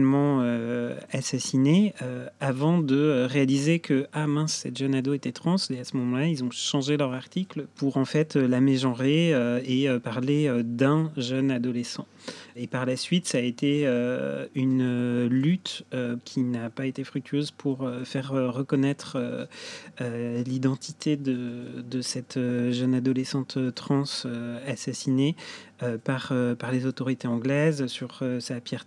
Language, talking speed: French, 155 wpm